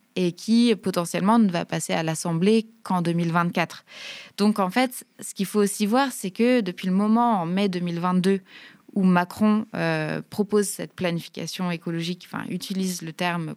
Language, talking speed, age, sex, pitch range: French, 160 wpm, 20-39, female, 175-225 Hz